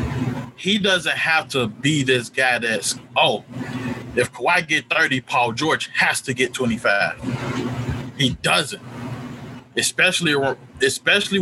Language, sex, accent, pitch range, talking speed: English, male, American, 125-150 Hz, 120 wpm